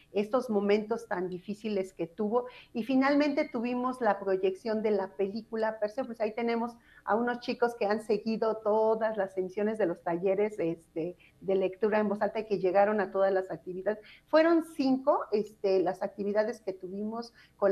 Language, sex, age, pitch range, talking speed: Spanish, female, 40-59, 190-225 Hz, 165 wpm